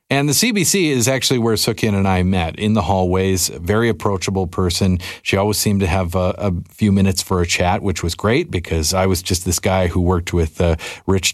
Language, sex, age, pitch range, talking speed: English, male, 40-59, 90-115 Hz, 220 wpm